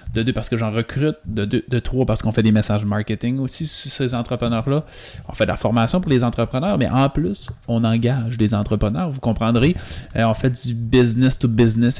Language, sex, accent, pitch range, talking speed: French, male, Canadian, 110-135 Hz, 215 wpm